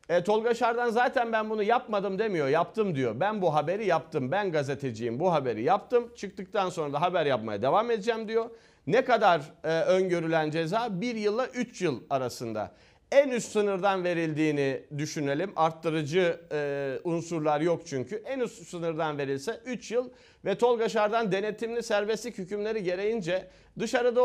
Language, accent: Turkish, native